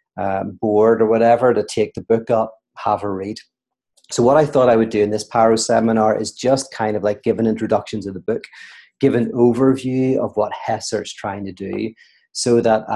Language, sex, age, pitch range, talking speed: English, male, 30-49, 105-120 Hz, 210 wpm